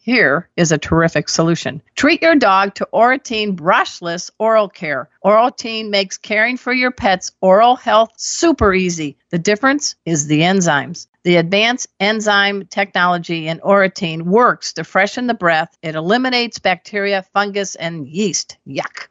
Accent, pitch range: American, 175-235 Hz